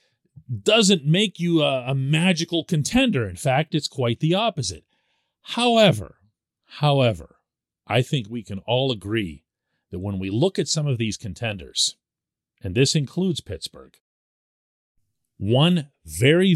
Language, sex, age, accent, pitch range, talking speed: English, male, 40-59, American, 105-150 Hz, 130 wpm